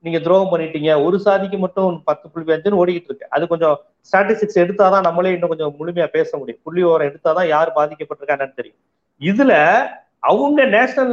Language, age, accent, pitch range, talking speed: Tamil, 30-49, native, 170-215 Hz, 155 wpm